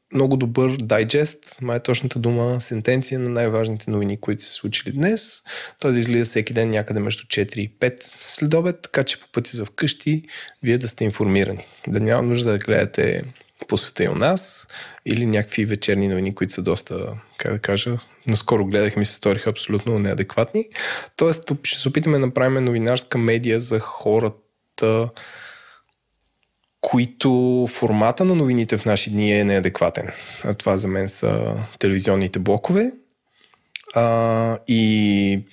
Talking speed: 150 wpm